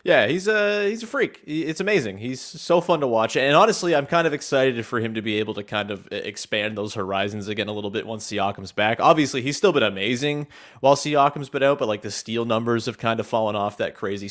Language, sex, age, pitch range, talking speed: English, male, 30-49, 105-145 Hz, 245 wpm